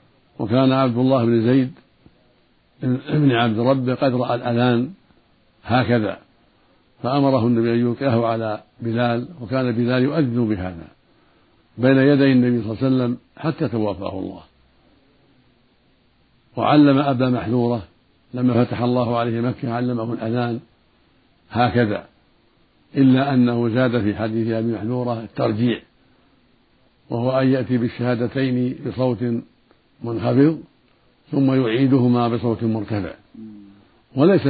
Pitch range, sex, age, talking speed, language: 115-130 Hz, male, 60-79, 105 wpm, Arabic